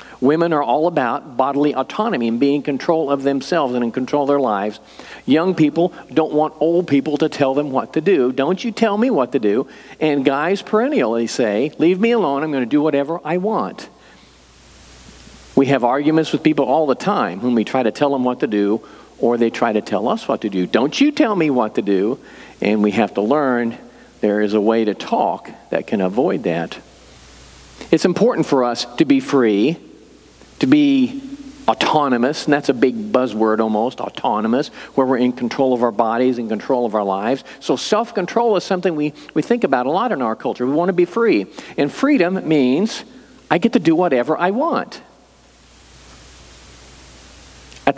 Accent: American